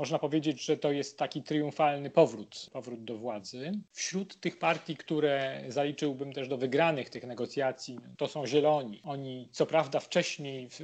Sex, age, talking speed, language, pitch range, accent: male, 40-59, 155 wpm, Polish, 130-155 Hz, native